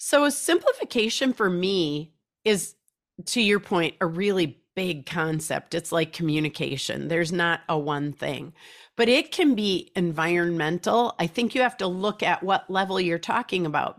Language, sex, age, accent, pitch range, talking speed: English, female, 40-59, American, 175-220 Hz, 165 wpm